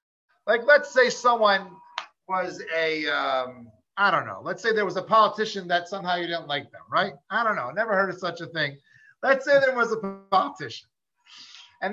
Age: 50-69